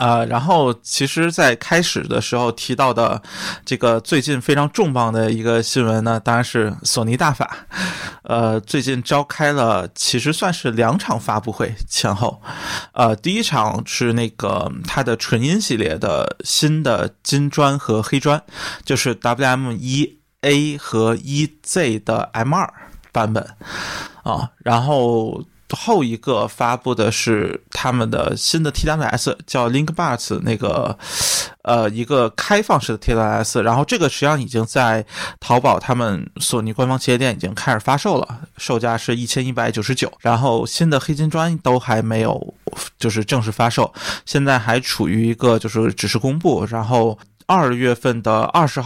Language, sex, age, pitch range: Chinese, male, 20-39, 115-145 Hz